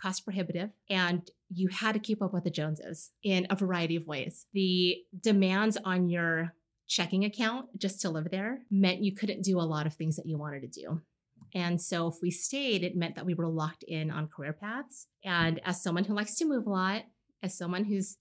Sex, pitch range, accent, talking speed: female, 170-200 Hz, American, 220 wpm